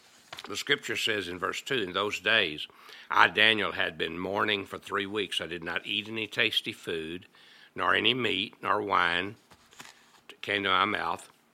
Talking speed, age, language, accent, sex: 170 wpm, 60-79, English, American, male